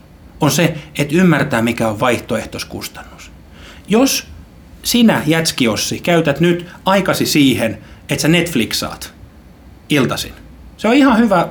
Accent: native